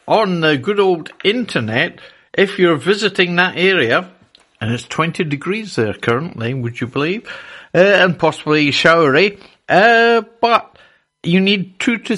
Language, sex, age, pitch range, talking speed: English, male, 60-79, 145-205 Hz, 145 wpm